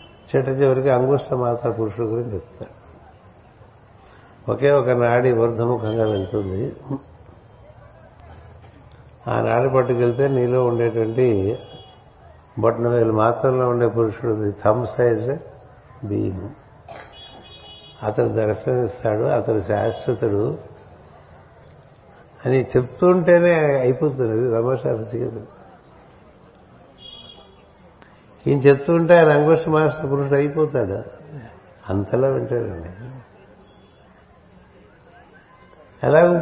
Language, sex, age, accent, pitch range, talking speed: Telugu, male, 60-79, native, 115-135 Hz, 75 wpm